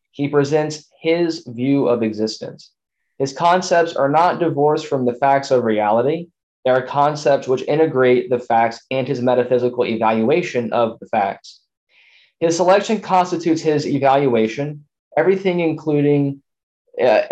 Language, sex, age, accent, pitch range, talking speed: English, male, 20-39, American, 120-155 Hz, 130 wpm